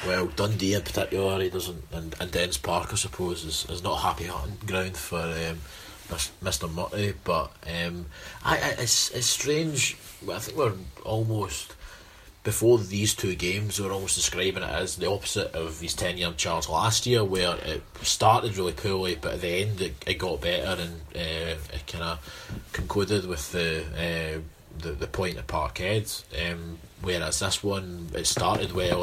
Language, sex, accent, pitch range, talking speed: English, male, British, 85-100 Hz, 180 wpm